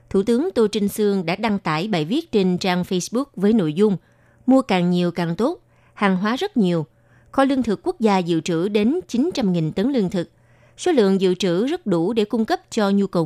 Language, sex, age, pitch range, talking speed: Vietnamese, female, 20-39, 175-230 Hz, 220 wpm